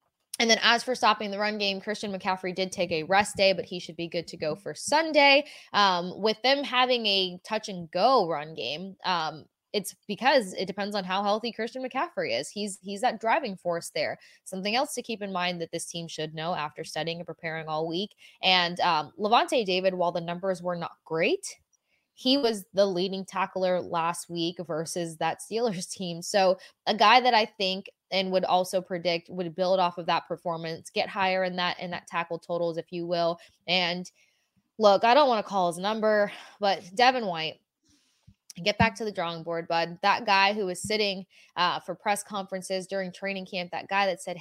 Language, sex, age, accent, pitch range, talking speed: English, female, 20-39, American, 175-210 Hz, 205 wpm